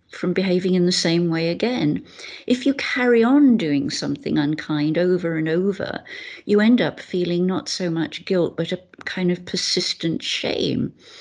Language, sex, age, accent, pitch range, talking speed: English, female, 50-69, British, 165-225 Hz, 165 wpm